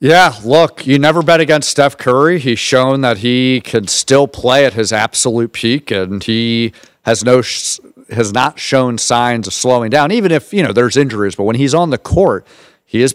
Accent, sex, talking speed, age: American, male, 200 wpm, 40-59